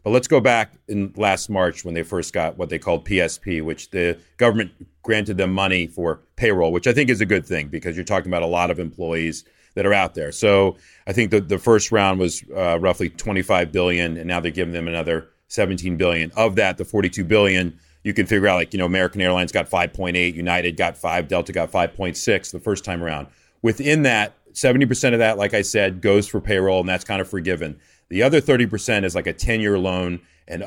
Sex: male